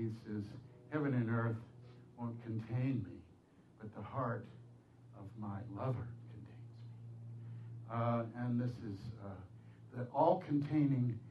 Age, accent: 60-79, American